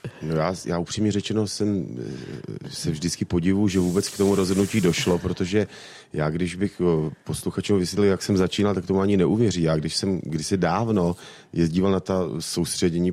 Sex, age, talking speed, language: male, 40-59, 170 wpm, Czech